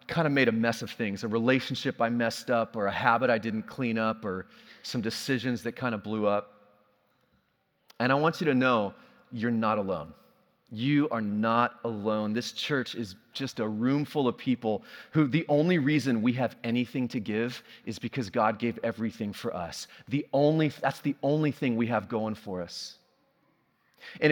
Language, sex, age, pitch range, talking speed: English, male, 30-49, 115-145 Hz, 190 wpm